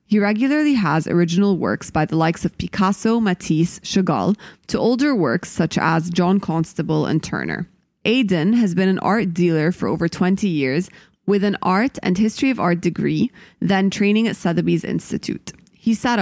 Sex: female